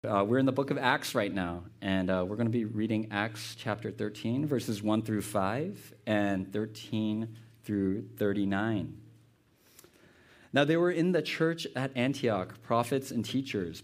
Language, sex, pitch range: English, male, 100-120 Hz